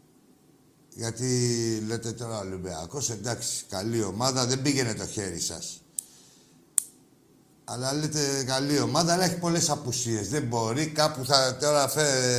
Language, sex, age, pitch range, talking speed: Greek, male, 50-69, 105-145 Hz, 125 wpm